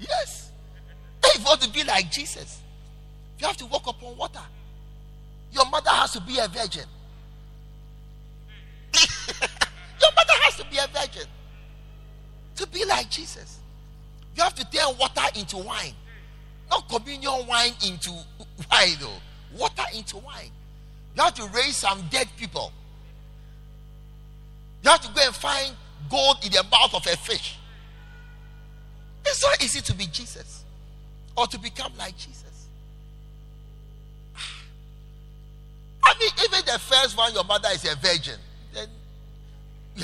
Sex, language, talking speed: male, English, 135 wpm